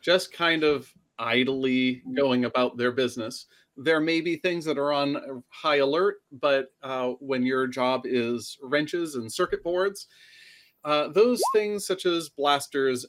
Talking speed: 150 wpm